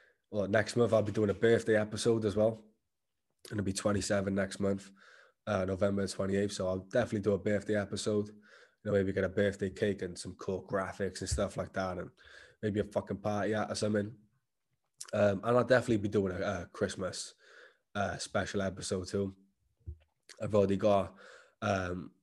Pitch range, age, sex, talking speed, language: 100-115 Hz, 20-39, male, 180 wpm, English